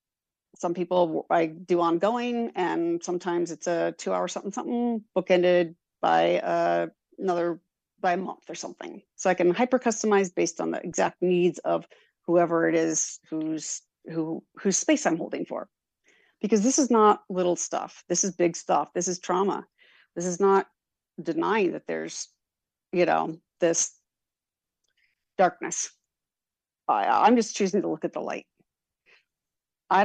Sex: female